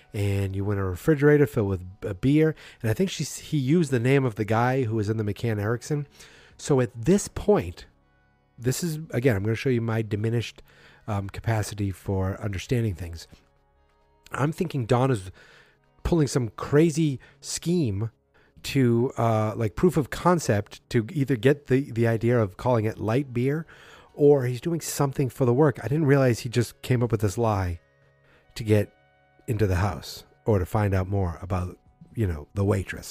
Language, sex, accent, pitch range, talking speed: English, male, American, 100-135 Hz, 185 wpm